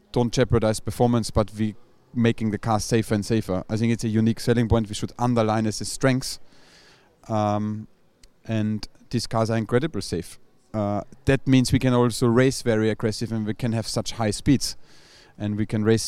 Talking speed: 190 wpm